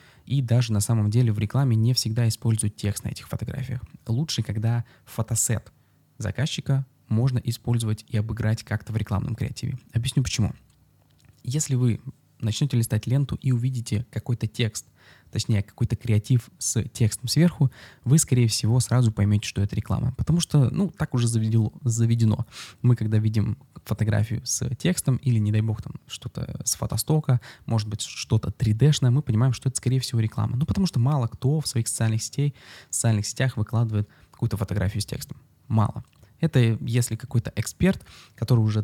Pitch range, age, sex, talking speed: 110-130 Hz, 20-39, male, 165 wpm